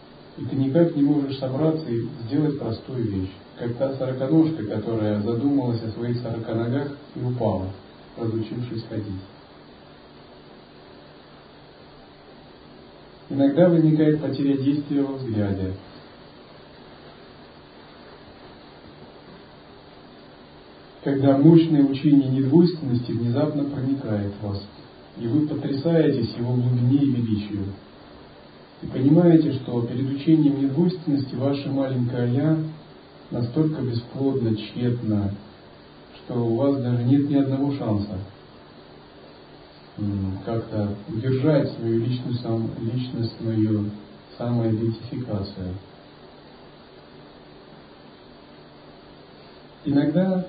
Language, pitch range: Russian, 100-140 Hz